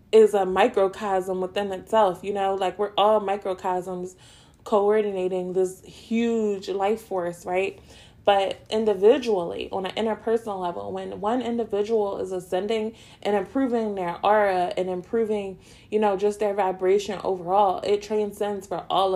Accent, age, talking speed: American, 20-39, 140 wpm